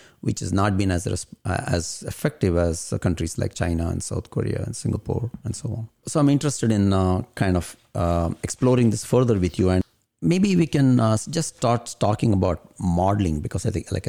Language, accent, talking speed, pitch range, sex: English, Indian, 195 wpm, 90-115 Hz, male